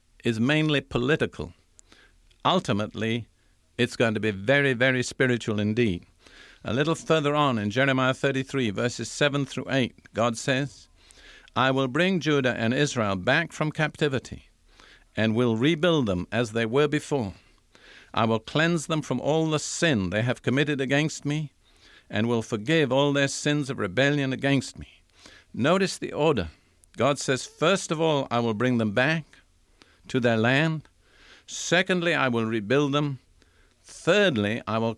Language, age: English, 50-69